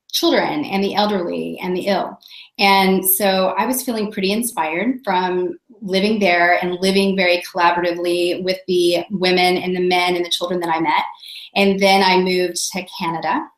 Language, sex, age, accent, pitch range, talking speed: English, female, 30-49, American, 180-200 Hz, 170 wpm